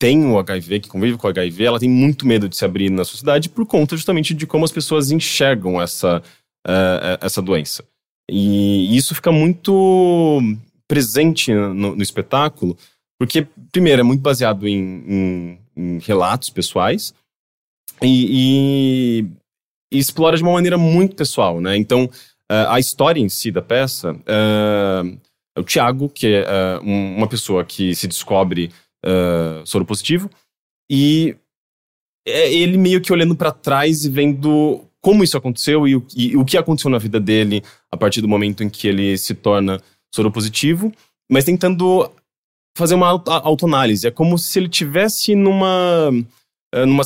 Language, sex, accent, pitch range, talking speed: Portuguese, male, Brazilian, 100-155 Hz, 155 wpm